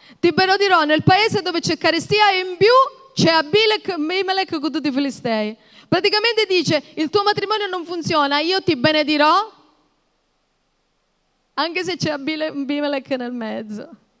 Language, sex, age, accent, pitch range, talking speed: Italian, female, 30-49, native, 210-315 Hz, 140 wpm